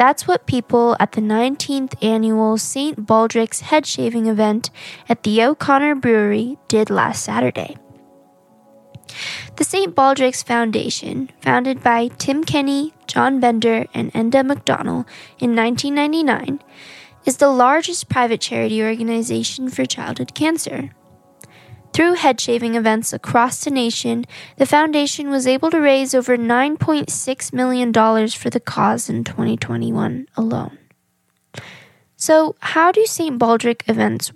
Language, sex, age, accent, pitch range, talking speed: English, female, 10-29, American, 220-275 Hz, 125 wpm